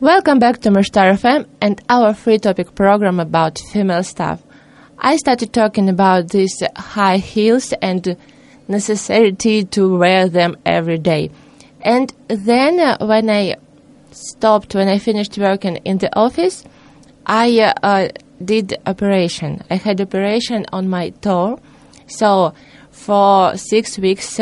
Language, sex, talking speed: English, female, 135 wpm